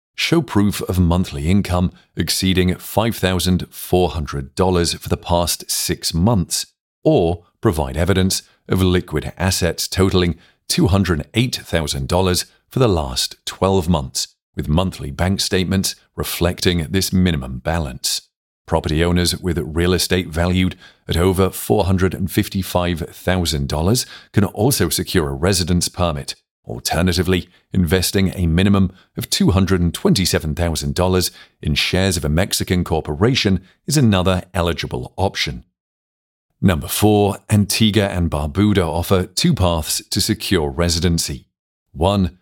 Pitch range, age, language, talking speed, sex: 85-95 Hz, 40-59, English, 110 wpm, male